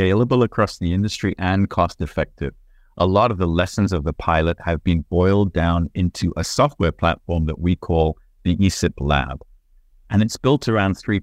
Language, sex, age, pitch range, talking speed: English, male, 50-69, 80-100 Hz, 175 wpm